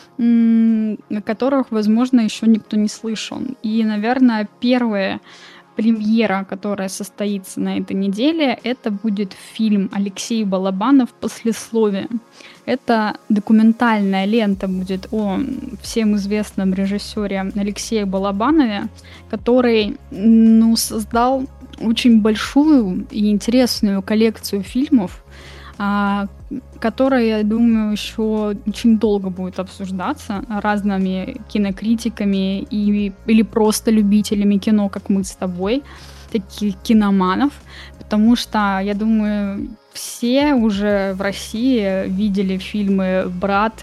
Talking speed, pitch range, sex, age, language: 100 wpm, 200-230 Hz, female, 10-29, Russian